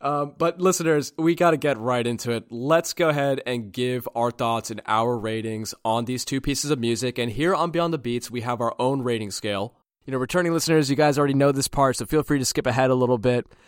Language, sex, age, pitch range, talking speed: English, male, 20-39, 115-145 Hz, 250 wpm